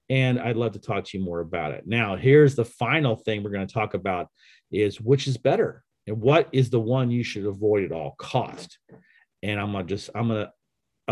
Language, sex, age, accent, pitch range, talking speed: English, male, 40-59, American, 105-135 Hz, 230 wpm